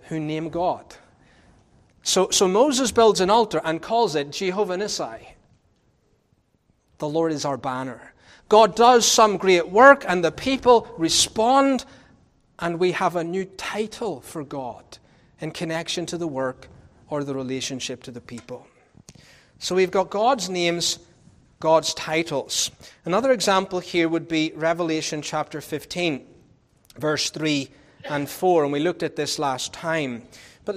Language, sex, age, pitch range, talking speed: English, male, 30-49, 150-205 Hz, 145 wpm